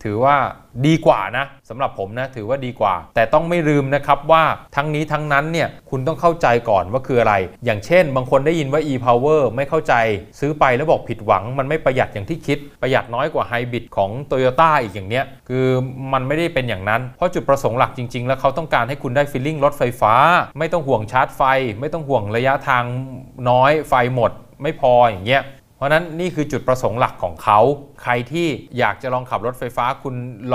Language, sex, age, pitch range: Thai, male, 20-39, 120-145 Hz